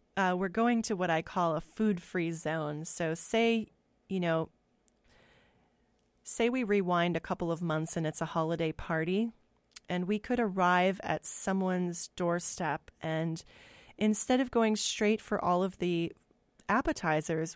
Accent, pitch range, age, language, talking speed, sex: American, 170-220 Hz, 30-49, English, 145 wpm, female